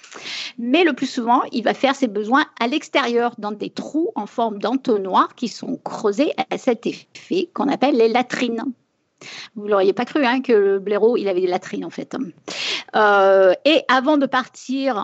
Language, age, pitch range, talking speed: French, 50-69, 210-280 Hz, 185 wpm